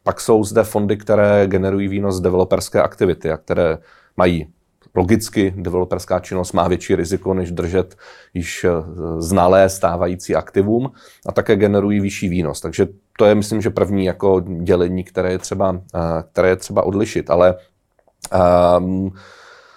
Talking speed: 140 wpm